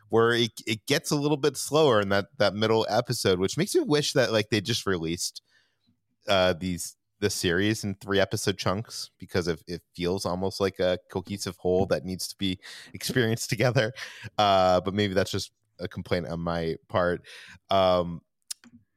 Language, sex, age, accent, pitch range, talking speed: English, male, 30-49, American, 90-120 Hz, 175 wpm